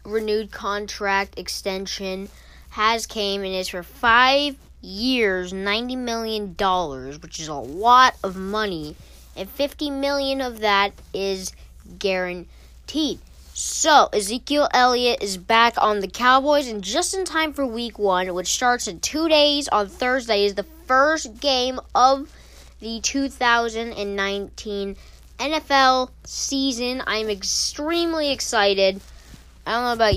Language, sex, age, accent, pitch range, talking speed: English, female, 20-39, American, 195-255 Hz, 125 wpm